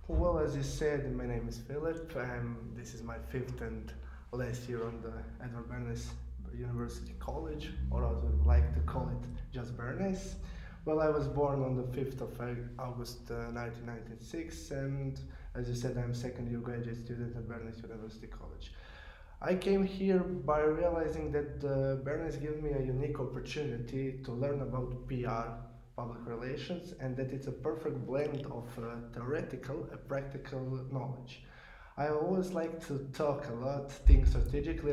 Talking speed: 170 wpm